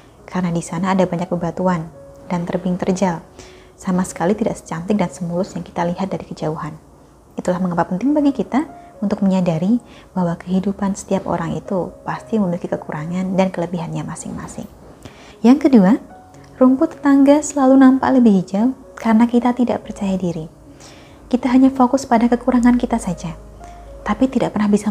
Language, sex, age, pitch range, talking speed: Indonesian, female, 20-39, 180-250 Hz, 150 wpm